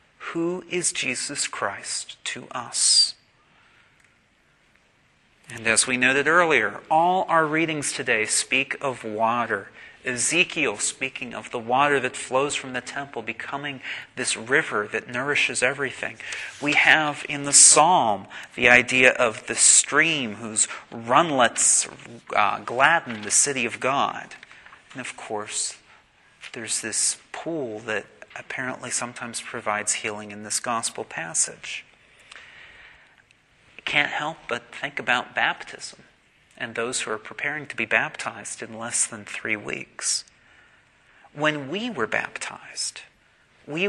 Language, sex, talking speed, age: English, male, 125 wpm, 40-59